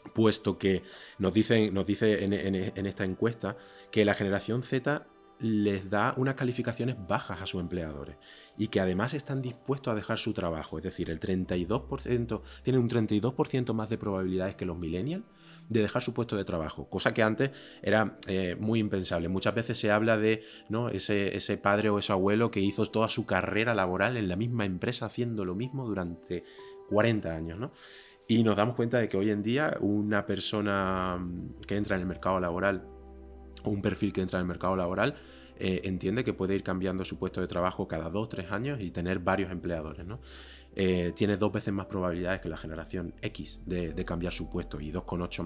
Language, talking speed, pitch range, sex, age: Spanish, 195 wpm, 90-110 Hz, male, 30-49